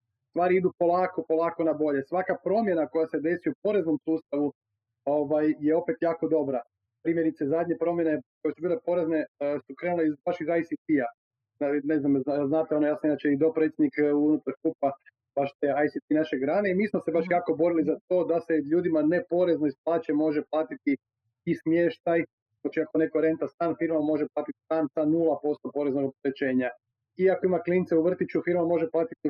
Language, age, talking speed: Croatian, 30-49, 175 wpm